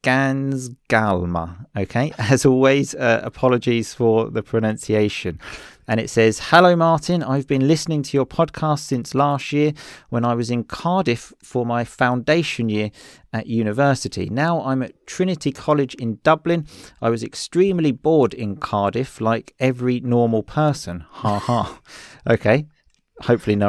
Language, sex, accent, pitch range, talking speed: English, male, British, 110-140 Hz, 145 wpm